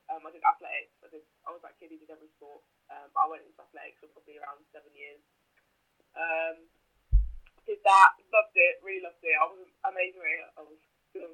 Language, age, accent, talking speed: English, 10-29, British, 210 wpm